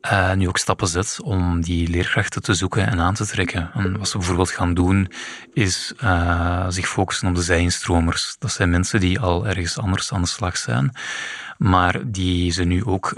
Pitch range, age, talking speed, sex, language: 90-100 Hz, 20-39, 190 wpm, male, Dutch